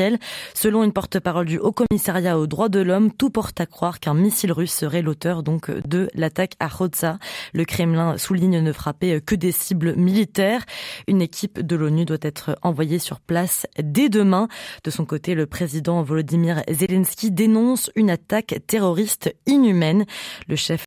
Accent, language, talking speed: French, French, 165 wpm